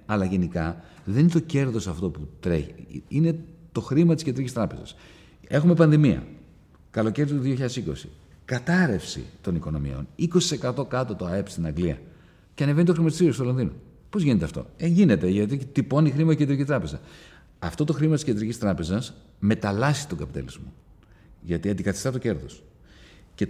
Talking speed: 155 wpm